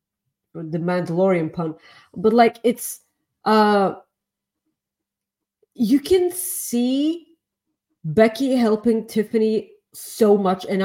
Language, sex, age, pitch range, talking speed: English, female, 30-49, 205-275 Hz, 90 wpm